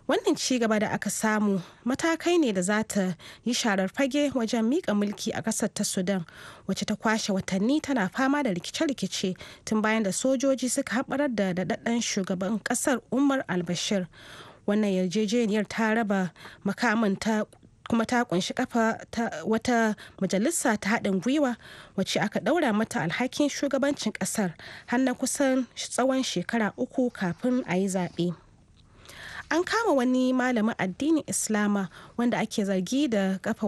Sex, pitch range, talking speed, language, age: female, 195-250 Hz, 150 wpm, English, 30-49